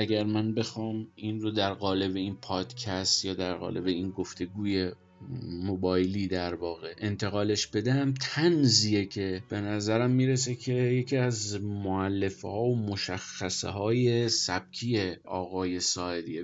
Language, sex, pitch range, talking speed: Persian, male, 100-125 Hz, 130 wpm